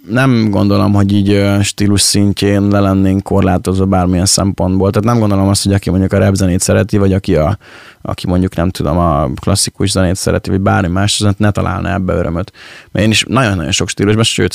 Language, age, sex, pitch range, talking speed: Hungarian, 20-39, male, 95-115 Hz, 195 wpm